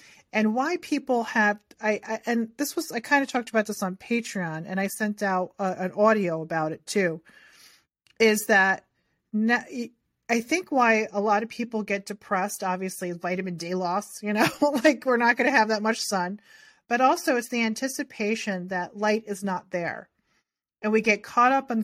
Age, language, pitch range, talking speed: 30-49, English, 190-235 Hz, 185 wpm